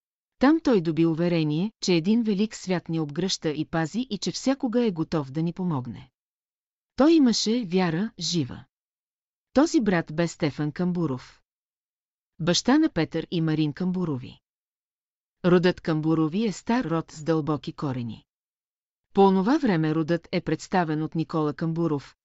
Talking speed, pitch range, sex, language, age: 140 wpm, 155-190 Hz, female, Bulgarian, 40-59